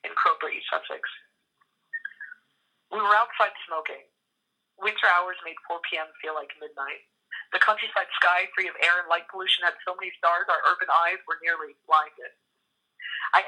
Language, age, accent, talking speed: English, 30-49, American, 160 wpm